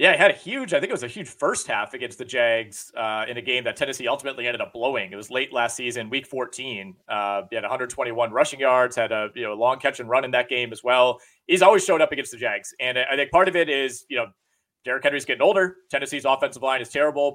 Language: English